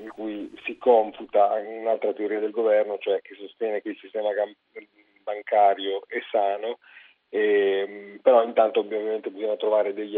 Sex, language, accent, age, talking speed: male, Italian, native, 40-59, 140 wpm